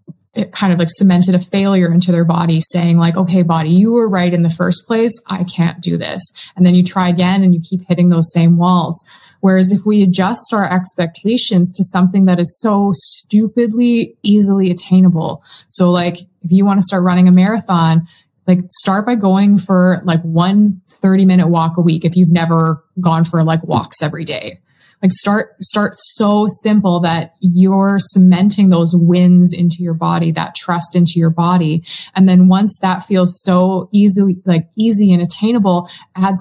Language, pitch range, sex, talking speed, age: English, 175-195 Hz, female, 185 wpm, 20-39